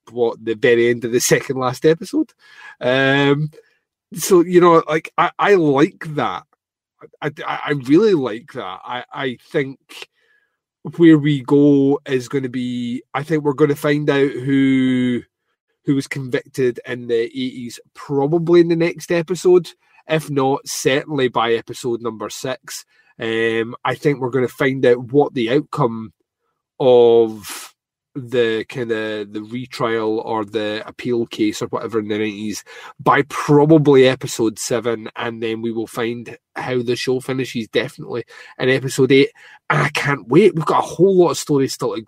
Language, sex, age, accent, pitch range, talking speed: English, male, 30-49, British, 120-155 Hz, 165 wpm